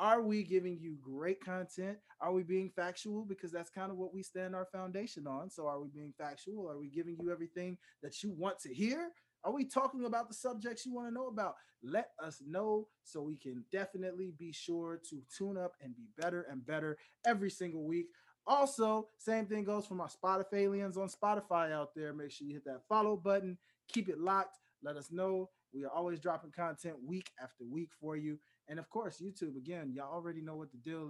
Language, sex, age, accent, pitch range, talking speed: English, male, 20-39, American, 160-210 Hz, 215 wpm